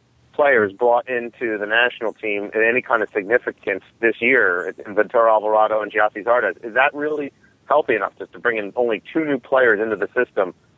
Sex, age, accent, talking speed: male, 40-59, American, 190 wpm